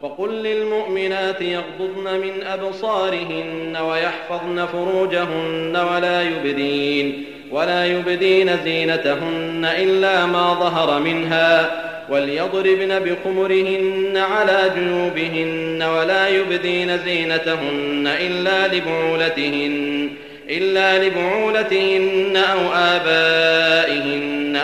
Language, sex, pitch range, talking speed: French, male, 160-190 Hz, 65 wpm